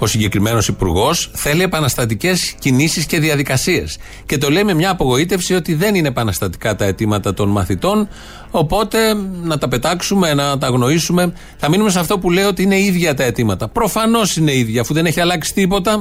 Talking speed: 180 wpm